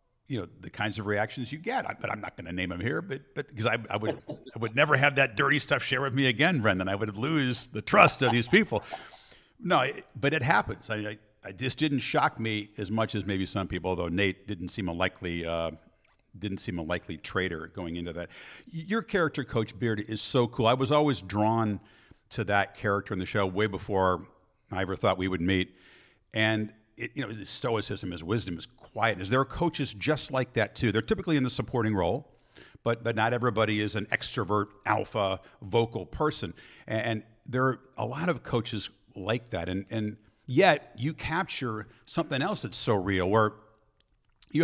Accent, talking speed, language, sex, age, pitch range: American, 210 wpm, English, male, 50-69, 100-130 Hz